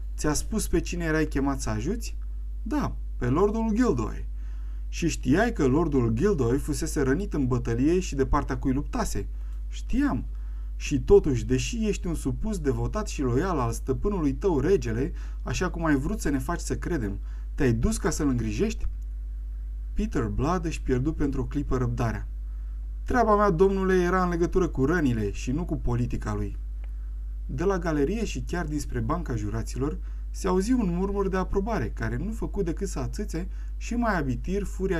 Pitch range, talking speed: 115-175 Hz, 170 wpm